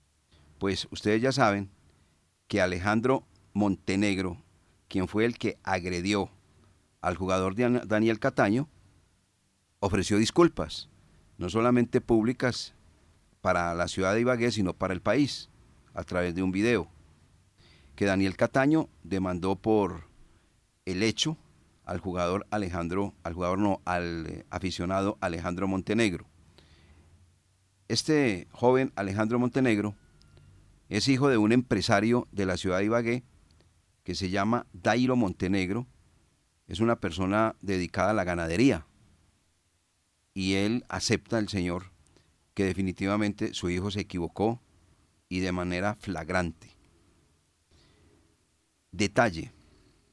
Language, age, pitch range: Spanish, 40-59, 85-110 Hz